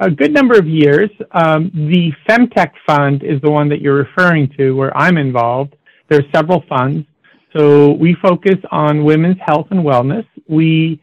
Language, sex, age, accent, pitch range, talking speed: English, male, 50-69, American, 140-175 Hz, 175 wpm